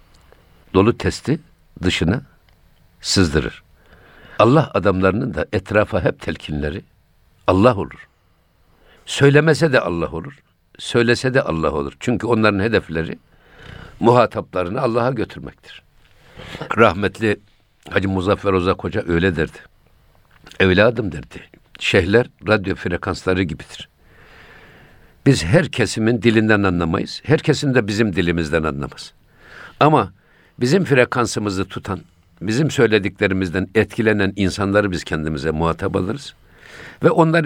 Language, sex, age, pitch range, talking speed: Turkish, male, 60-79, 85-110 Hz, 100 wpm